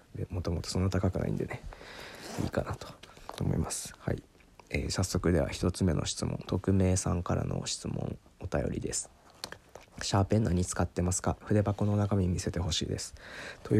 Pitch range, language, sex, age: 85-105 Hz, Japanese, male, 20-39